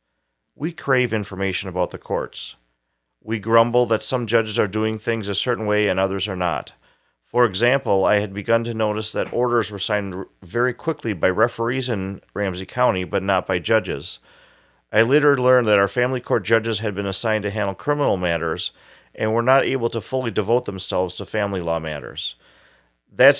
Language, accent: English, American